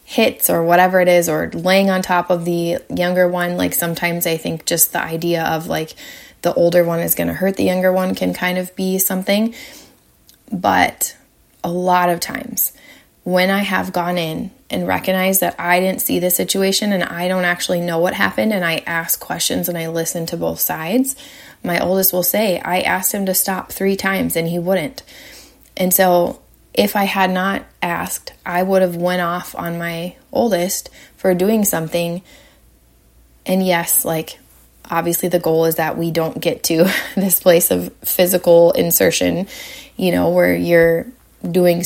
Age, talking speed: 30-49, 180 wpm